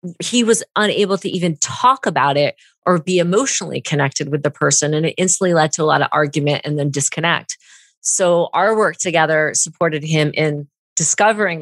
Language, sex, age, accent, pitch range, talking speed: English, female, 30-49, American, 165-215 Hz, 180 wpm